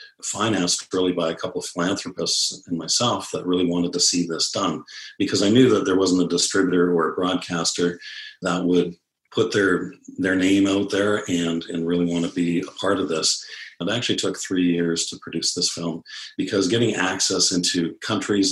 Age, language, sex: 40-59, English, male